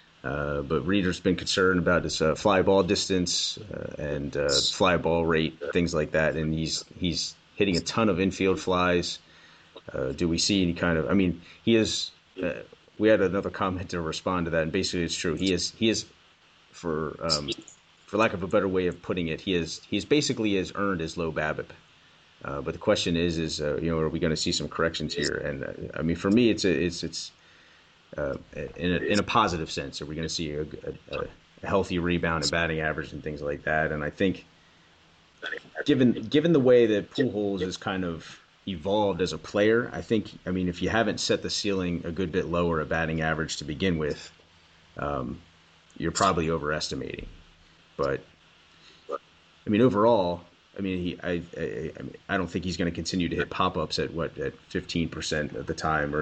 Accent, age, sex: American, 30-49, male